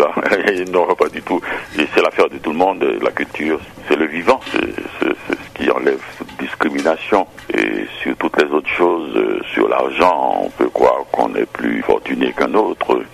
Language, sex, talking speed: French, male, 185 wpm